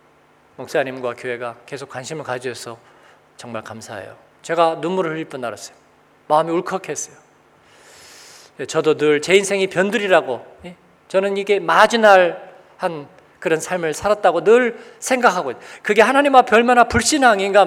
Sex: male